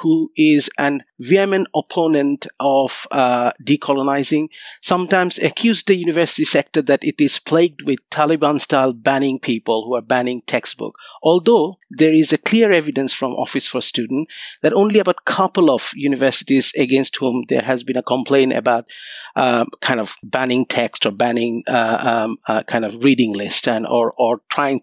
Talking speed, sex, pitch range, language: 165 wpm, male, 130-165 Hz, English